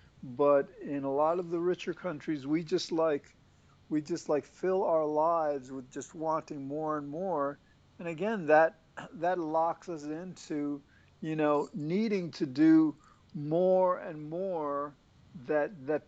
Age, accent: 50-69, American